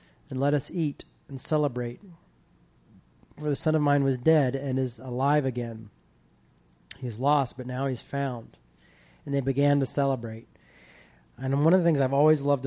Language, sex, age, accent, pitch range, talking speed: English, male, 30-49, American, 115-140 Hz, 170 wpm